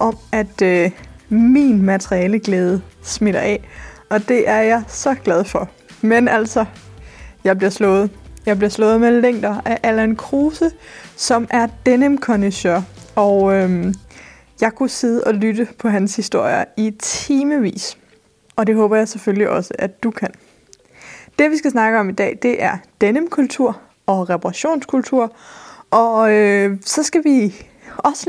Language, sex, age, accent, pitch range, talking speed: Danish, female, 20-39, native, 205-270 Hz, 140 wpm